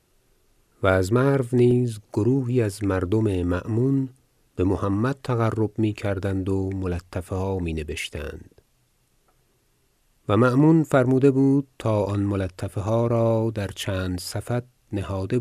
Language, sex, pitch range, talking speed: Persian, male, 95-125 Hz, 115 wpm